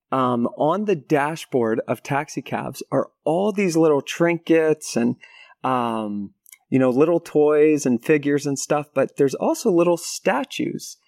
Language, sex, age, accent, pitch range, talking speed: English, male, 30-49, American, 130-195 Hz, 145 wpm